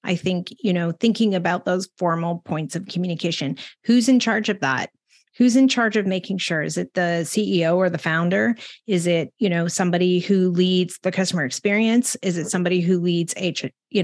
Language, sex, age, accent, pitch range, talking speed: English, female, 30-49, American, 170-200 Hz, 190 wpm